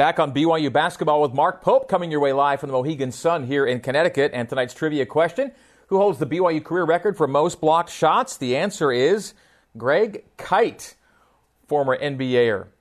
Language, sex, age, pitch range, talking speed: English, male, 40-59, 130-170 Hz, 185 wpm